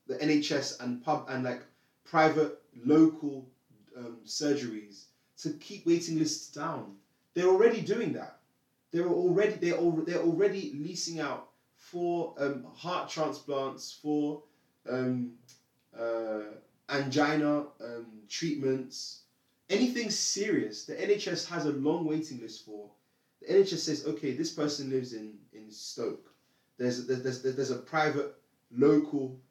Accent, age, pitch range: British, 20-39, 125-155 Hz